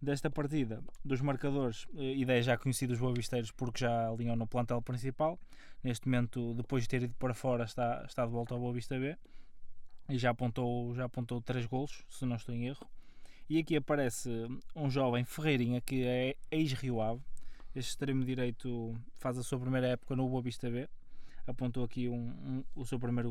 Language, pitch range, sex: Portuguese, 120-135 Hz, male